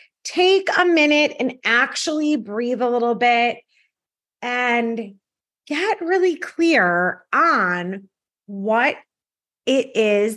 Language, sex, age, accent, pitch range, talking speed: English, female, 30-49, American, 215-310 Hz, 100 wpm